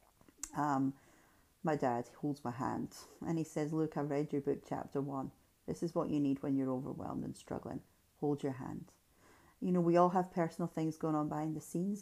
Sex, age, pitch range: female, 40-59, 140-185 Hz